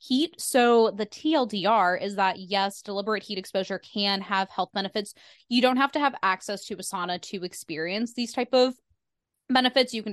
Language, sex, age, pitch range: English, female, 20-39, 185-225 Hz